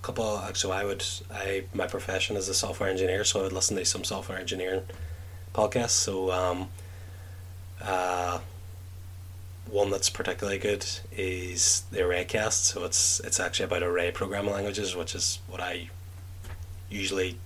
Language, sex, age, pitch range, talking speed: English, male, 20-39, 90-95 Hz, 155 wpm